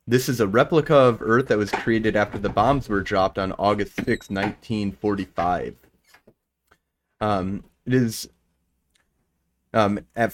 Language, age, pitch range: English, 30-49, 95-120 Hz